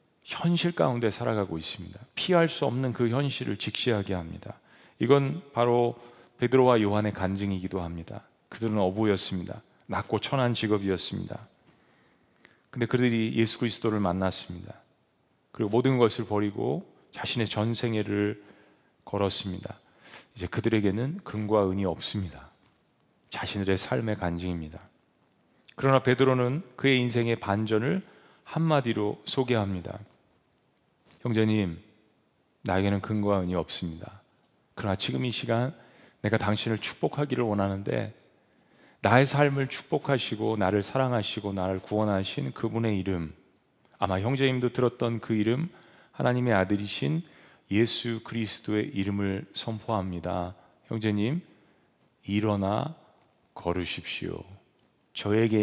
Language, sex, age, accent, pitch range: Korean, male, 40-59, native, 100-125 Hz